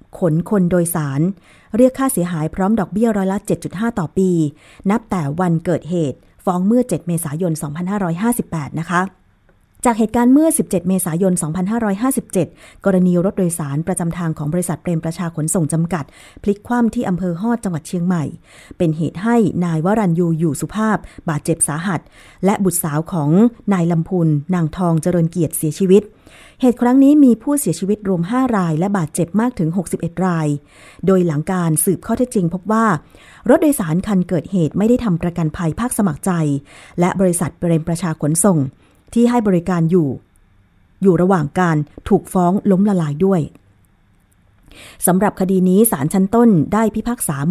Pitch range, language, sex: 165-210 Hz, Thai, female